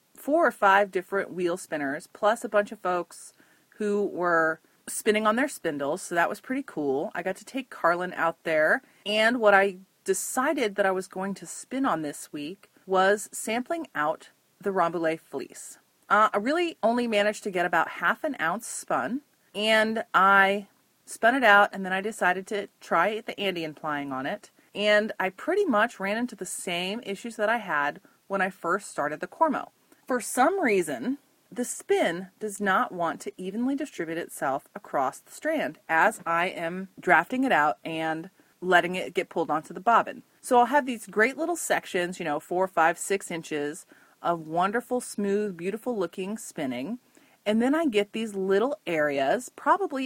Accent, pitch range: American, 180-245 Hz